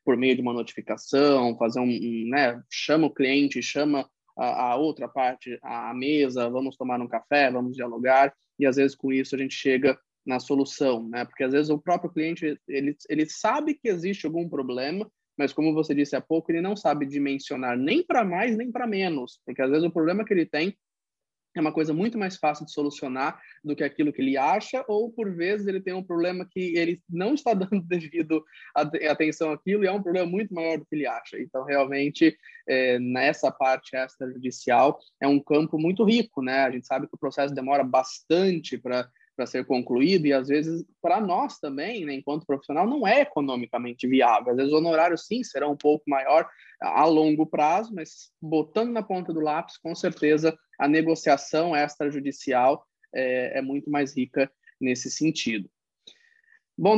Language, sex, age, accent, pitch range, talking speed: Portuguese, male, 20-39, Brazilian, 130-170 Hz, 190 wpm